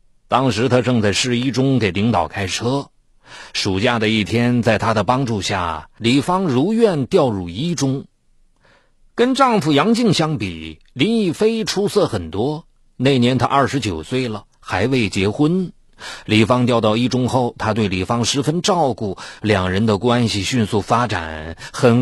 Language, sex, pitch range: Chinese, male, 110-150 Hz